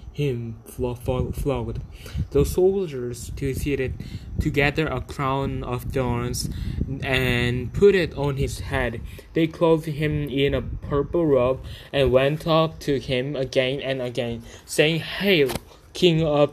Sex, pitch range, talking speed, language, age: male, 120-150 Hz, 130 wpm, English, 20-39